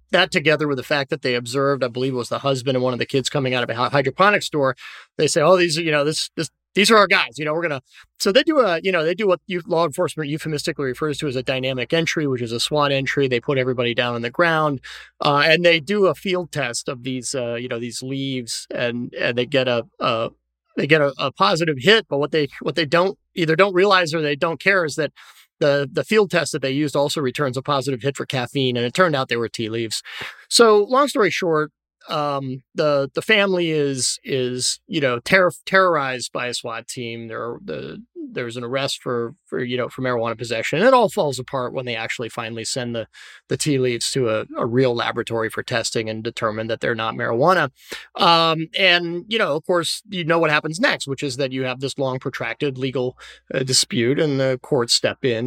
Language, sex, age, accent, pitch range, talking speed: English, male, 30-49, American, 125-165 Hz, 240 wpm